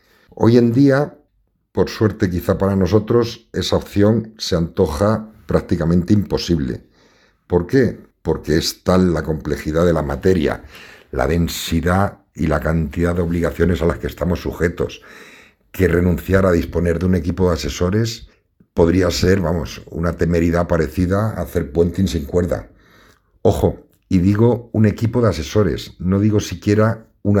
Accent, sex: Spanish, male